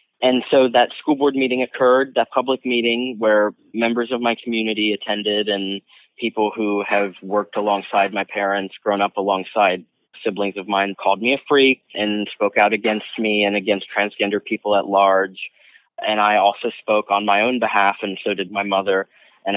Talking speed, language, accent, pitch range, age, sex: 180 wpm, English, American, 100-115 Hz, 20-39, male